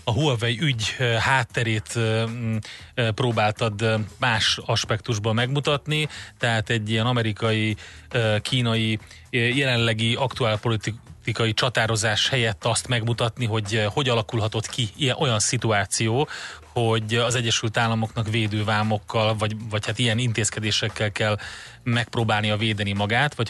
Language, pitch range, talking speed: Hungarian, 105-120 Hz, 105 wpm